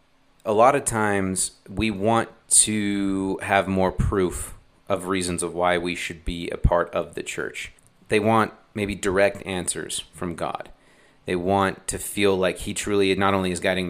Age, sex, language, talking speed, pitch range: 30-49, male, English, 175 wpm, 95-105 Hz